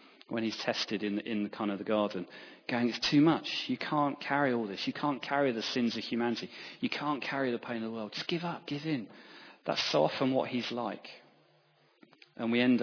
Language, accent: English, British